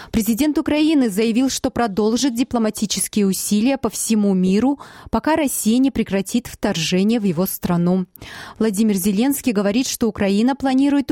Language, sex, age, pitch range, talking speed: Russian, female, 20-39, 190-255 Hz, 130 wpm